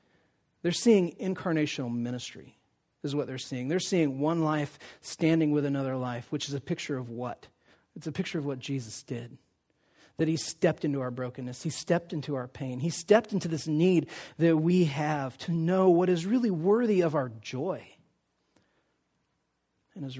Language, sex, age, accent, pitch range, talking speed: English, male, 40-59, American, 140-180 Hz, 175 wpm